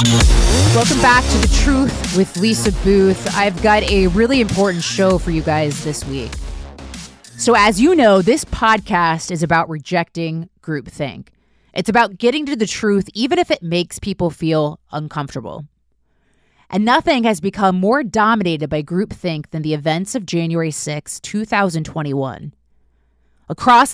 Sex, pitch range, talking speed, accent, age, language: female, 150-220 Hz, 145 wpm, American, 30-49, English